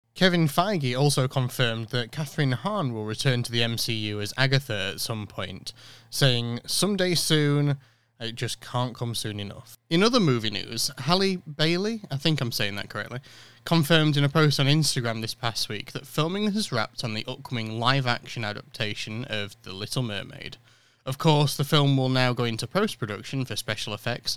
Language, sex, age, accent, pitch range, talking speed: English, male, 20-39, British, 115-145 Hz, 180 wpm